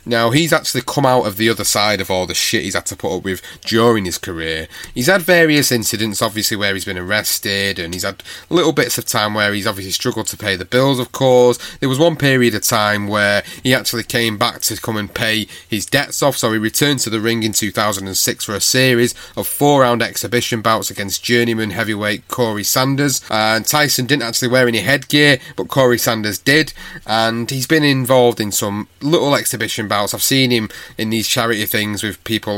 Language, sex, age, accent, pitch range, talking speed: English, male, 30-49, British, 100-125 Hz, 215 wpm